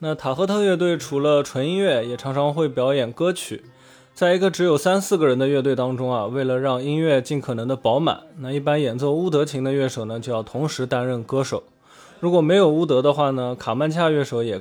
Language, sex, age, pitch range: Chinese, male, 20-39, 125-165 Hz